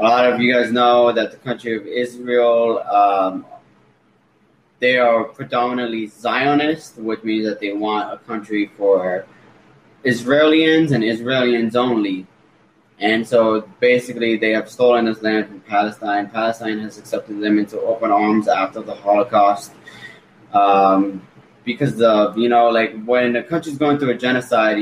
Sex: male